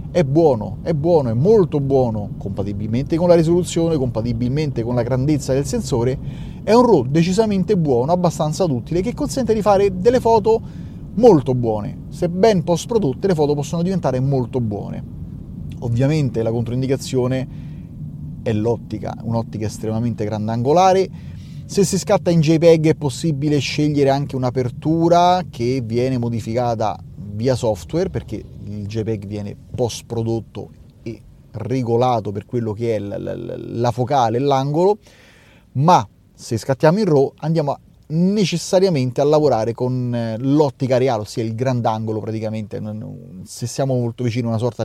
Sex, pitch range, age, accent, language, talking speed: male, 115-170 Hz, 30-49, native, Italian, 140 wpm